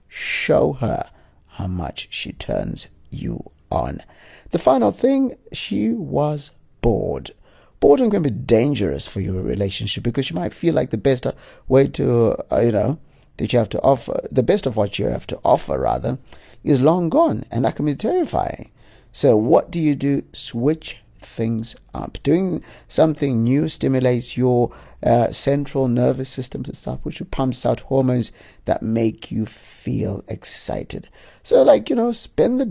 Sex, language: male, English